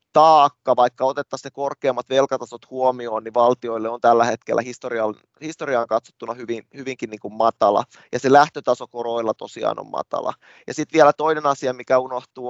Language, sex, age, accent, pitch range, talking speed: Finnish, male, 20-39, native, 120-140 Hz, 165 wpm